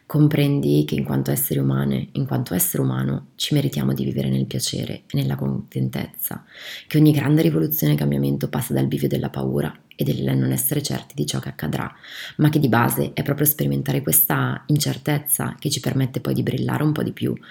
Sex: female